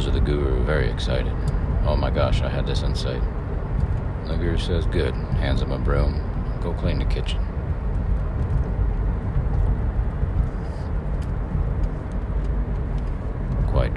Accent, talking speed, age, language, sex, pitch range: American, 105 wpm, 40-59, English, male, 65-85 Hz